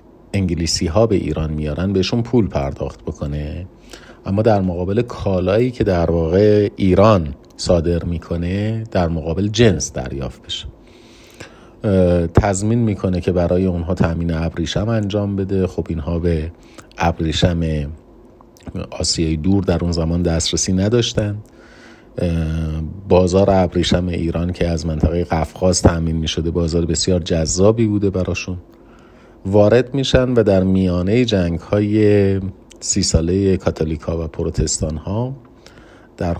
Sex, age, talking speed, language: male, 40-59, 115 wpm, Persian